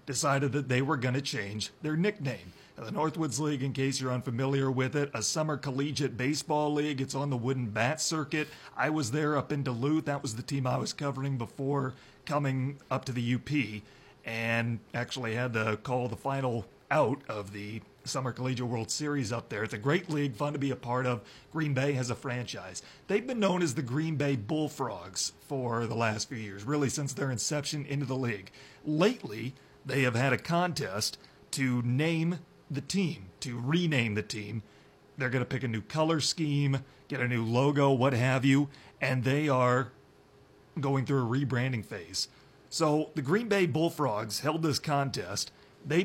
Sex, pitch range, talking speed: male, 125-150 Hz, 190 wpm